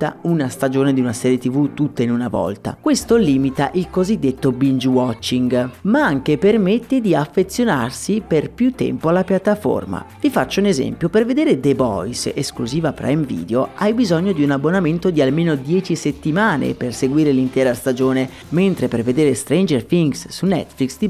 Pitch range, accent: 130-190 Hz, native